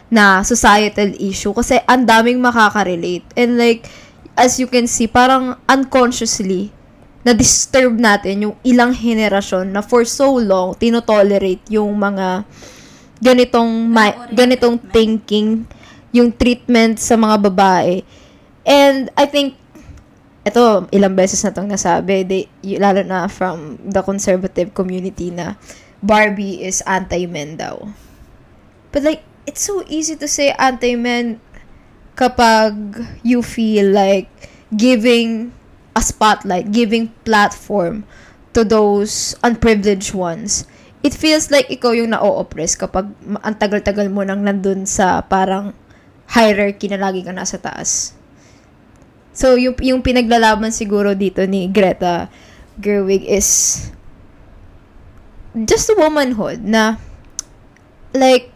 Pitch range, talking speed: 195-240 Hz, 115 wpm